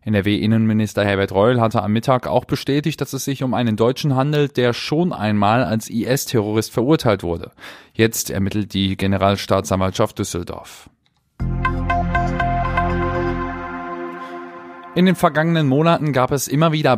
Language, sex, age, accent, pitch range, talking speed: German, male, 30-49, German, 105-130 Hz, 125 wpm